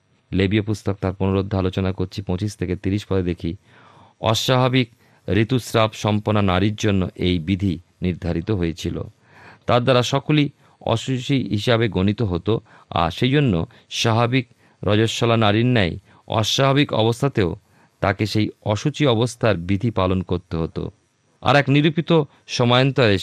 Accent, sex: native, male